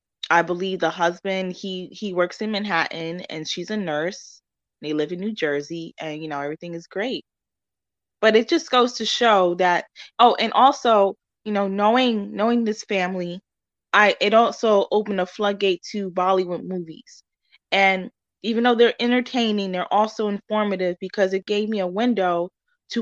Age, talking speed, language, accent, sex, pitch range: 20-39, 165 wpm, English, American, female, 180-220 Hz